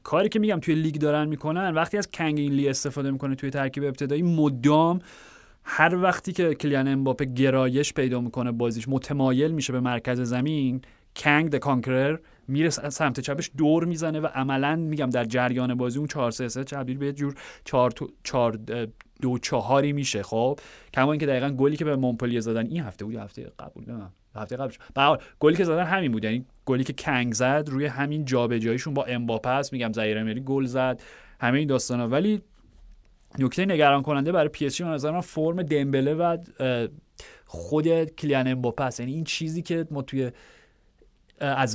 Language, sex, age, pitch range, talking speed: Persian, male, 30-49, 120-150 Hz, 160 wpm